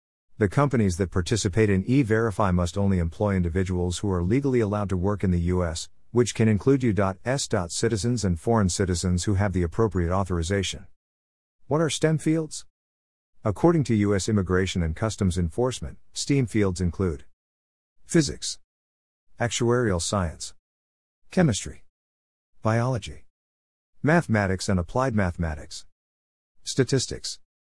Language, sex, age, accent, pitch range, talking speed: English, male, 50-69, American, 70-115 Hz, 120 wpm